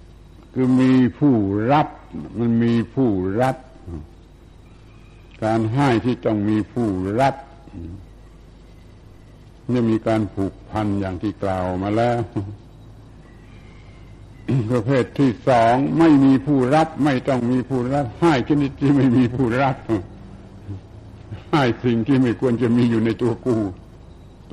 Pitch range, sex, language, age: 95-125 Hz, male, Thai, 70-89